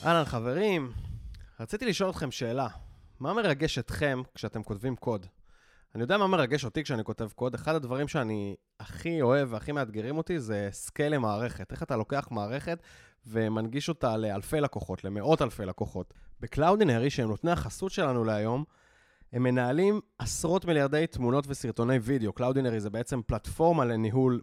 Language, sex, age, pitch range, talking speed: Hebrew, male, 20-39, 110-150 Hz, 145 wpm